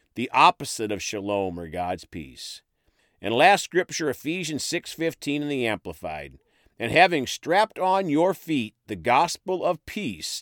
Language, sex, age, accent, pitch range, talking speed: English, male, 50-69, American, 100-145 Hz, 145 wpm